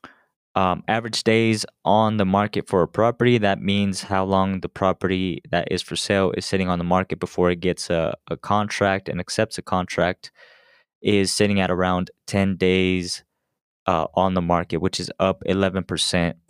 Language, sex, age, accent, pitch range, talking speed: English, male, 20-39, American, 90-100 Hz, 175 wpm